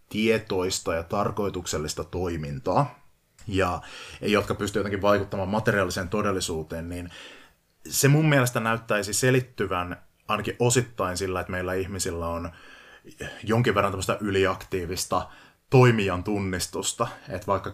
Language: Finnish